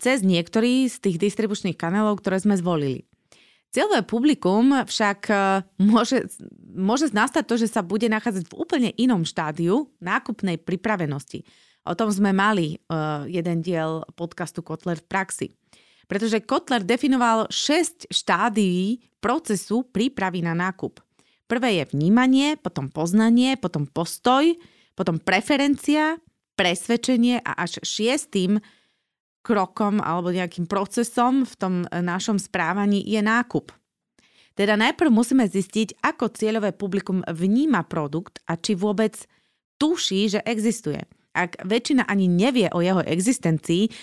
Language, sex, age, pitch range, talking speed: Slovak, female, 30-49, 180-235 Hz, 125 wpm